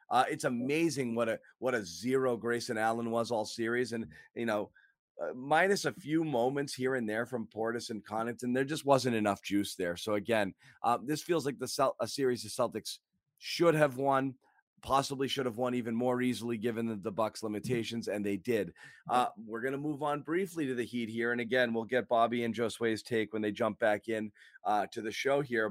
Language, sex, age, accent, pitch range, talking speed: English, male, 30-49, American, 115-145 Hz, 215 wpm